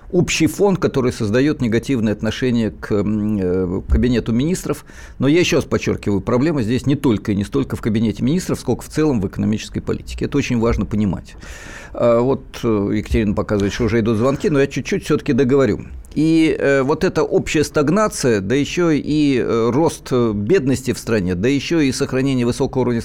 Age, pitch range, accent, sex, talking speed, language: 50-69, 110-145 Hz, native, male, 165 wpm, Russian